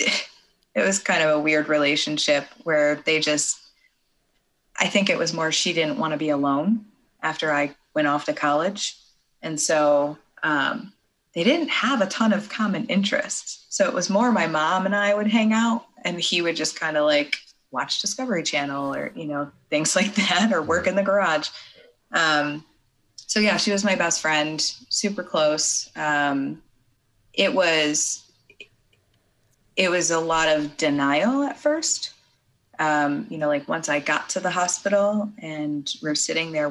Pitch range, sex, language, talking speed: 150-200 Hz, female, English, 170 wpm